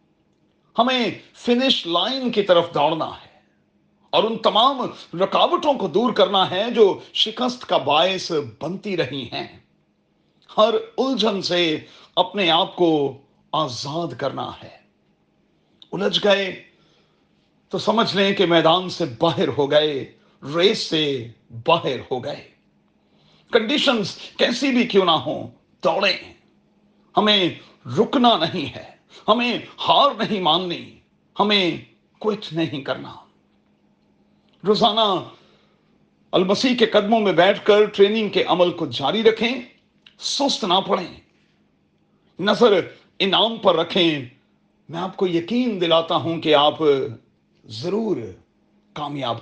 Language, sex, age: Urdu, male, 40-59